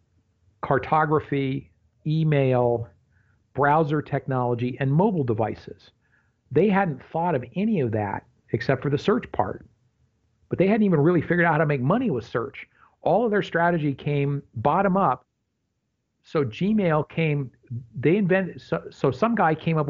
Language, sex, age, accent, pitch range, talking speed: English, male, 50-69, American, 115-155 Hz, 150 wpm